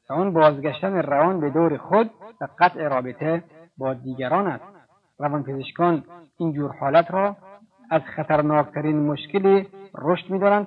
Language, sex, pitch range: Persian, male, 145-180 Hz